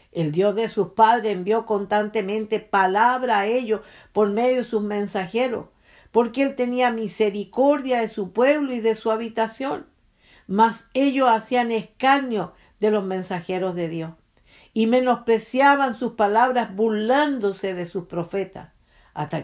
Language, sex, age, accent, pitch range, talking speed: English, female, 50-69, American, 180-230 Hz, 135 wpm